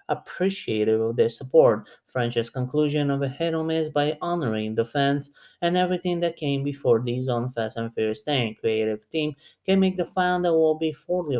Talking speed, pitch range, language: 190 wpm, 120-165 Hz, English